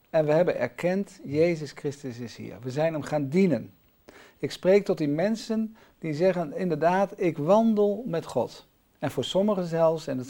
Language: Dutch